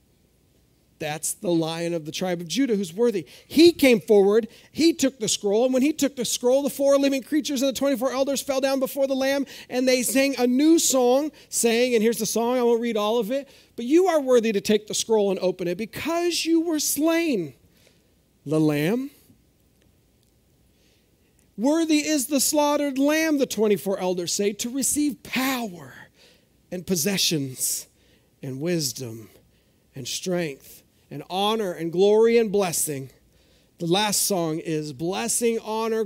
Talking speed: 165 wpm